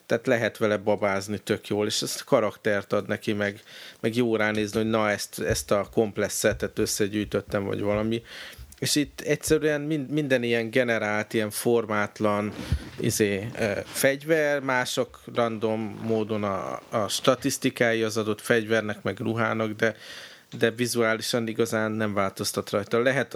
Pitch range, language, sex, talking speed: 105-120 Hz, Hungarian, male, 135 wpm